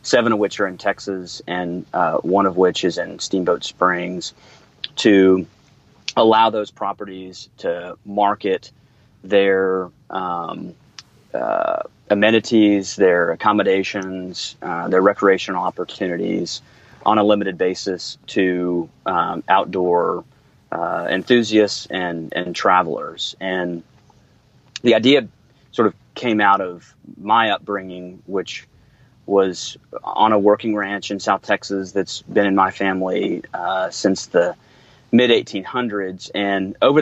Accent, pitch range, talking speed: American, 90-105 Hz, 120 wpm